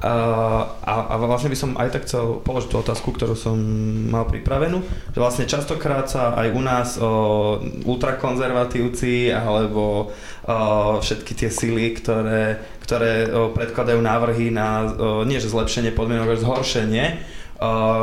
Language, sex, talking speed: Slovak, male, 140 wpm